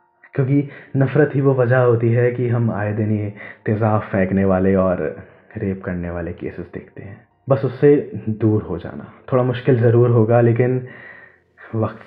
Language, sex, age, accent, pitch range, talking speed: Hindi, male, 20-39, native, 95-115 Hz, 165 wpm